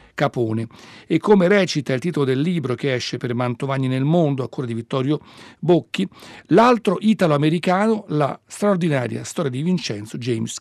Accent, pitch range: native, 120-160 Hz